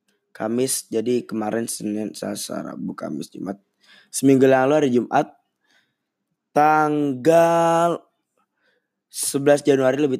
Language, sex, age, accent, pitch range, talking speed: Indonesian, male, 20-39, native, 125-155 Hz, 100 wpm